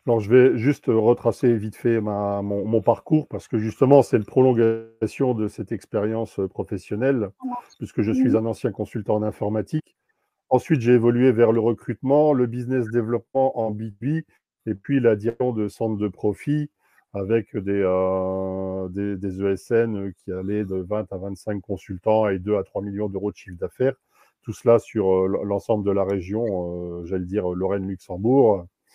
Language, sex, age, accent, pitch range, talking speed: French, male, 40-59, French, 100-125 Hz, 165 wpm